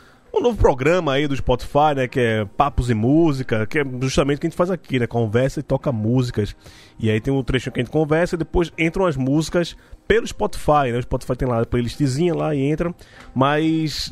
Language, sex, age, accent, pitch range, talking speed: Portuguese, male, 20-39, Brazilian, 125-160 Hz, 225 wpm